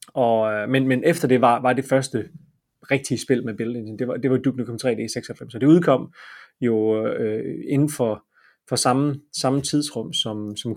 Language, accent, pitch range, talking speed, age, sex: Danish, native, 115-140 Hz, 200 wpm, 30-49, male